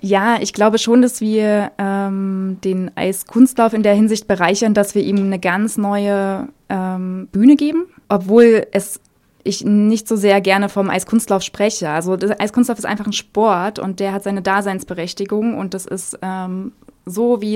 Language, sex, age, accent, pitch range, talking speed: German, female, 20-39, German, 195-220 Hz, 170 wpm